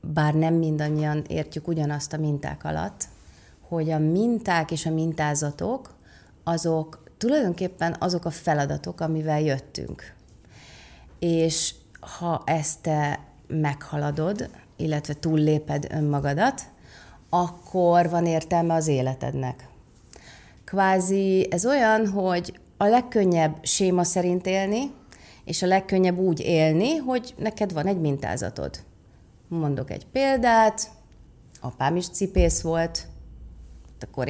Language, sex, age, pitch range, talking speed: Hungarian, female, 30-49, 150-195 Hz, 105 wpm